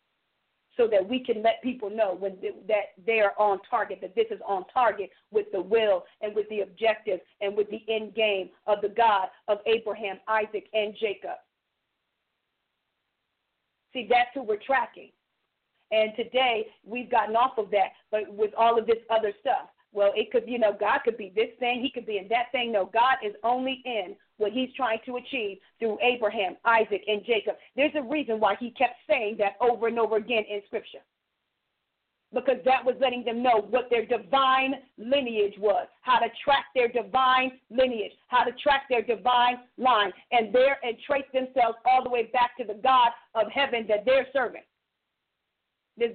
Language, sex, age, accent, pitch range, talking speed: English, female, 40-59, American, 210-255 Hz, 185 wpm